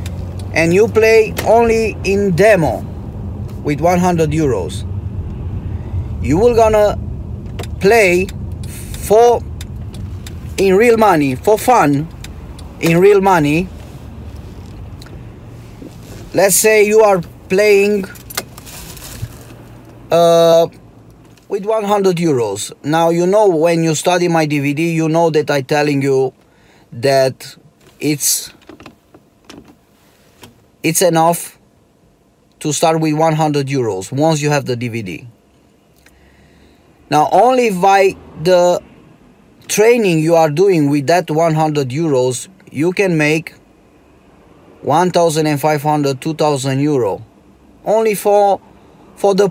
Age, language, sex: 30-49, English, male